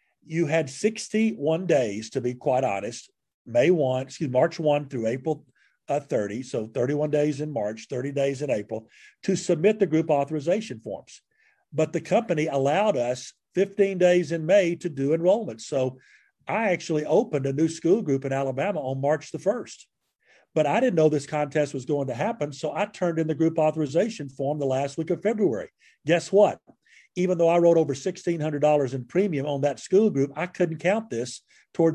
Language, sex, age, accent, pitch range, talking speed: English, male, 50-69, American, 140-175 Hz, 190 wpm